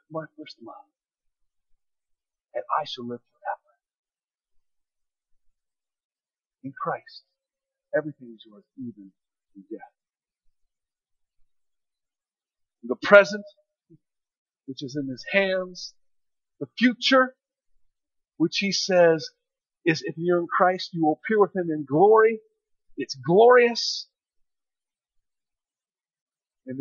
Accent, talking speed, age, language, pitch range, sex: American, 95 wpm, 50-69, English, 155-240 Hz, male